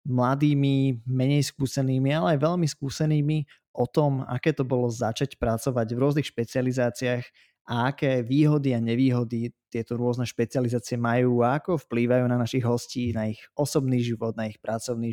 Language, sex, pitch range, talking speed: Slovak, male, 120-135 Hz, 155 wpm